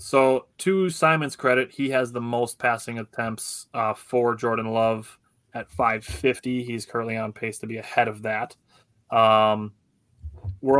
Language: English